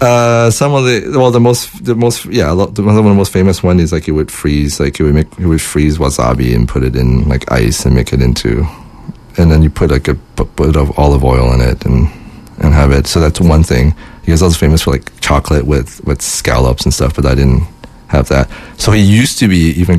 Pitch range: 75-90 Hz